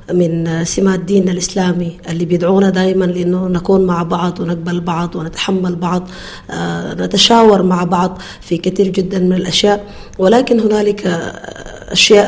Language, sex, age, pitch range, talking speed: Arabic, female, 20-39, 175-195 Hz, 125 wpm